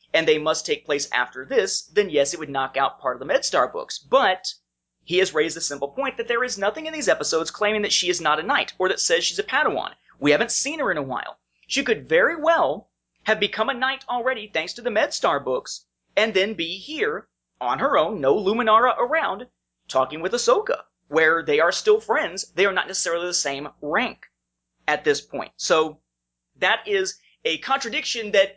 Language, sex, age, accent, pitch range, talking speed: English, male, 30-49, American, 145-220 Hz, 210 wpm